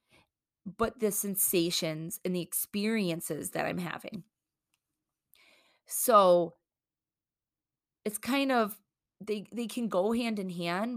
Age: 20-39